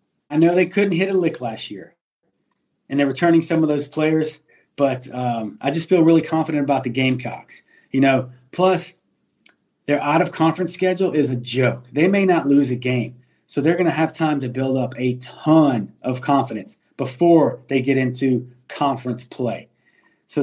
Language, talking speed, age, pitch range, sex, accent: English, 175 wpm, 30-49, 130-155 Hz, male, American